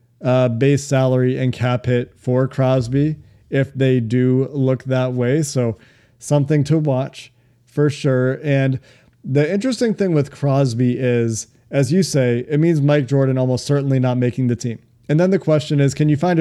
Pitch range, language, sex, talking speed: 125-150 Hz, English, male, 175 wpm